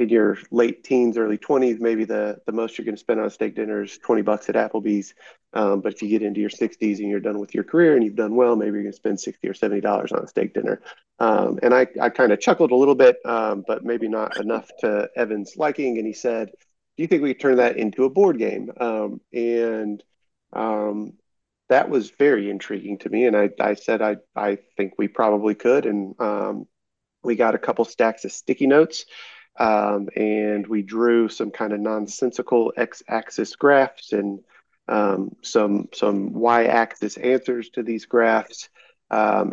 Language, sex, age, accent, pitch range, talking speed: English, male, 30-49, American, 105-120 Hz, 205 wpm